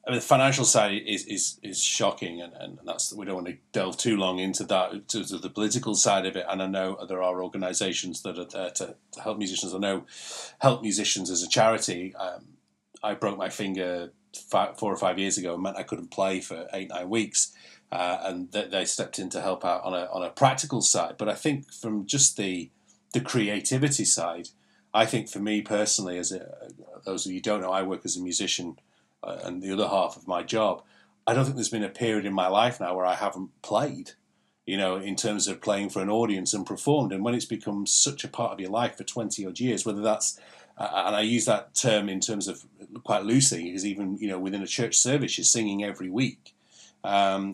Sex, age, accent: male, 30-49, British